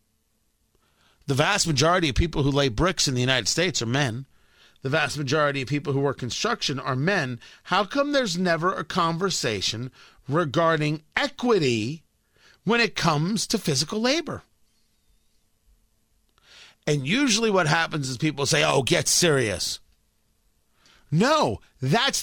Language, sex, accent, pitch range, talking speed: English, male, American, 140-225 Hz, 135 wpm